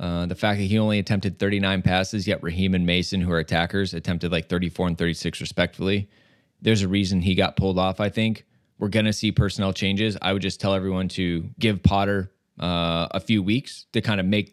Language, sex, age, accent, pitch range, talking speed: English, male, 20-39, American, 100-130 Hz, 220 wpm